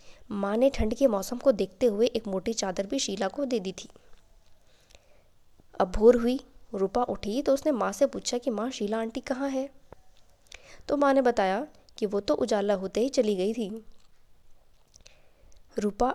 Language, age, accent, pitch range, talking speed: Hindi, 20-39, native, 200-245 Hz, 175 wpm